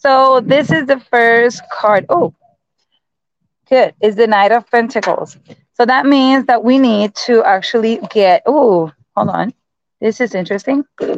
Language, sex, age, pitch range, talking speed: English, female, 30-49, 200-255 Hz, 150 wpm